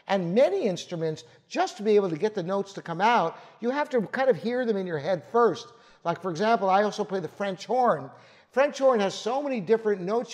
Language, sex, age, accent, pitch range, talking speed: English, male, 60-79, American, 175-235 Hz, 240 wpm